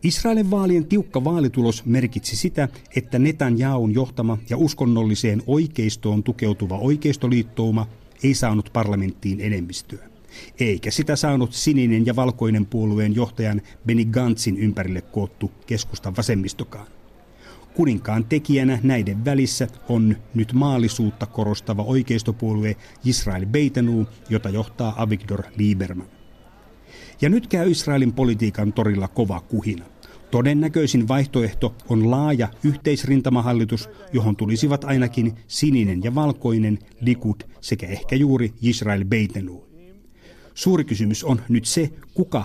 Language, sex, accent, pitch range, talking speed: Finnish, male, native, 105-135 Hz, 110 wpm